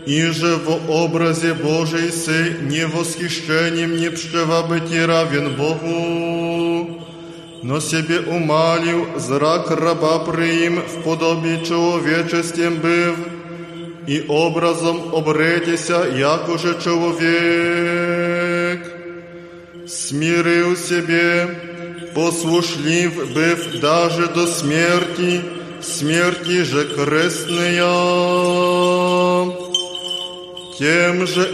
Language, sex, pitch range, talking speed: Polish, male, 165-180 Hz, 70 wpm